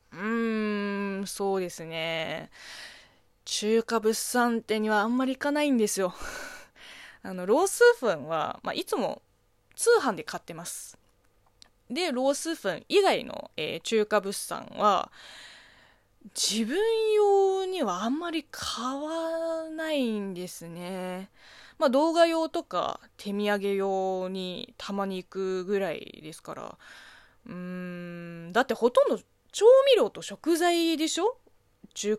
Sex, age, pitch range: female, 20-39, 185-300 Hz